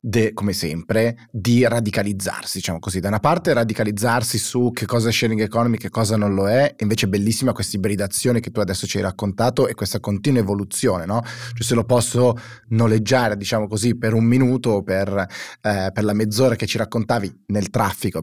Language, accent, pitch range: Italian, native, 105-130 Hz